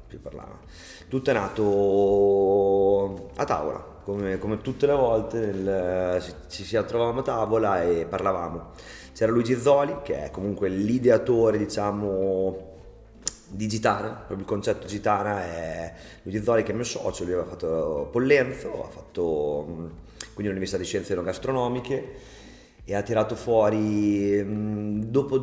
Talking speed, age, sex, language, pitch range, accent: 130 wpm, 30-49, male, Italian, 100-120 Hz, native